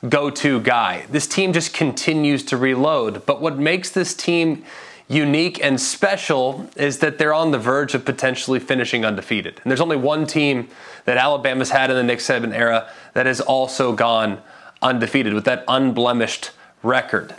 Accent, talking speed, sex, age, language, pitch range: American, 165 wpm, male, 20-39, English, 125-150 Hz